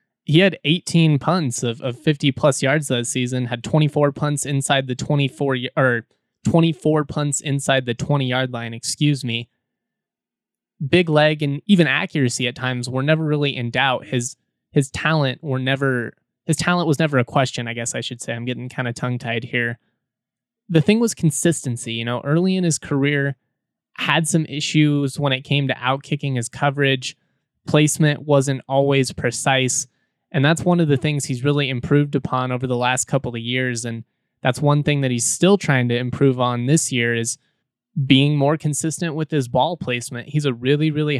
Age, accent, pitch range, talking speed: 20-39, American, 125-150 Hz, 185 wpm